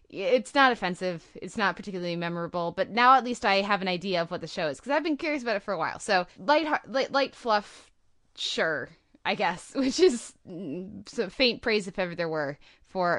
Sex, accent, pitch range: female, American, 175-225 Hz